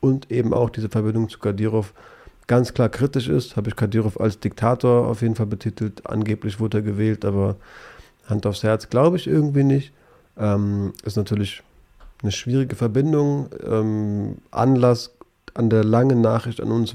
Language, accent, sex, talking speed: German, German, male, 155 wpm